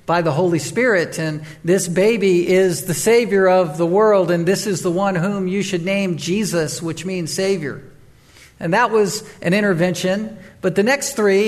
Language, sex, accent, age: English, male, American, 50-69